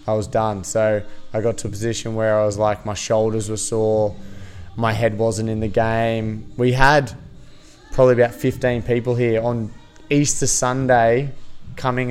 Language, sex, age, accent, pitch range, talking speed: English, male, 20-39, Australian, 110-125 Hz, 165 wpm